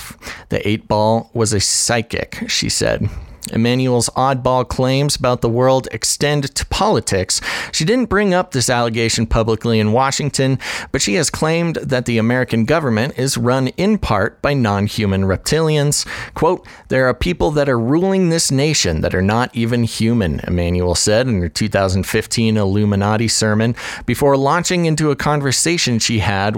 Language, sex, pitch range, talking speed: English, male, 110-140 Hz, 155 wpm